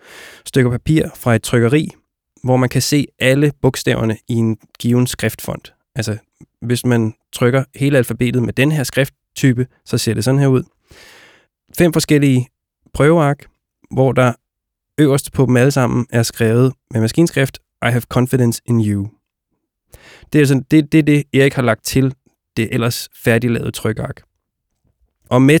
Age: 20-39